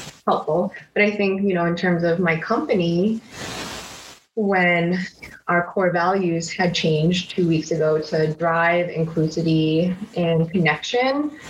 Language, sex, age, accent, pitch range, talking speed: English, female, 20-39, American, 160-180 Hz, 130 wpm